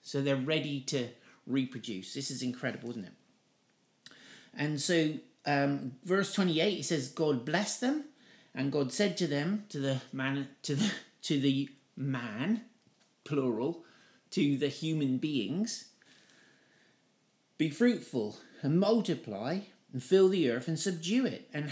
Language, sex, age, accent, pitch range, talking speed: English, male, 50-69, British, 130-190 Hz, 140 wpm